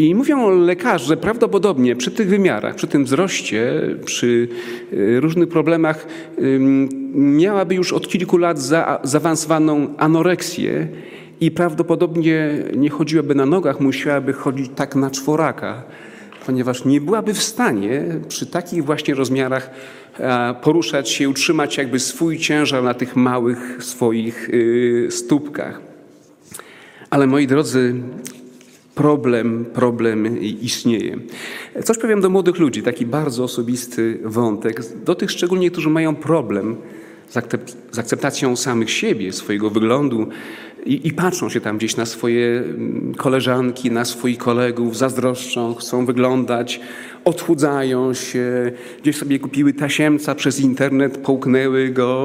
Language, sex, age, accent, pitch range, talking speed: Polish, male, 40-59, native, 125-160 Hz, 120 wpm